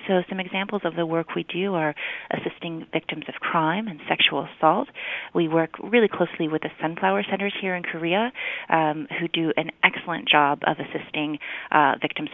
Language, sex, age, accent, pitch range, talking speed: English, female, 30-49, American, 155-195 Hz, 180 wpm